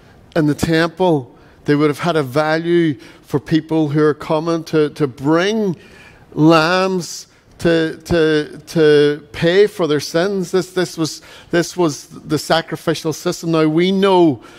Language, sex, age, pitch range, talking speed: English, male, 50-69, 155-185 Hz, 150 wpm